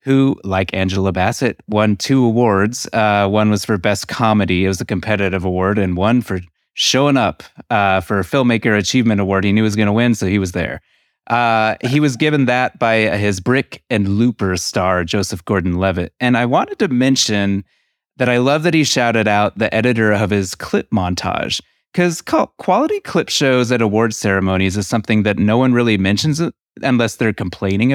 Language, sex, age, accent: English, male, 30-49, American